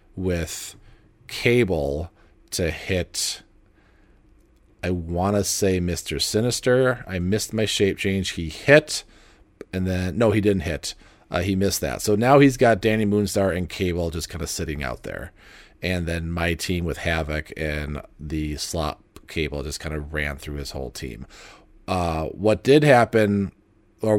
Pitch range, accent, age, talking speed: 80-105 Hz, American, 40-59, 160 wpm